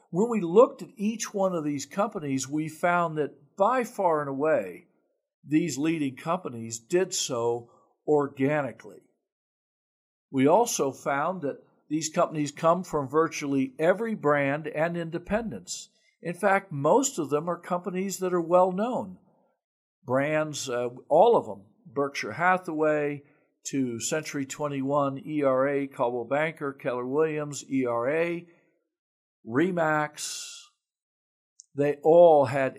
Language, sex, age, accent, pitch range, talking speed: English, male, 60-79, American, 130-175 Hz, 120 wpm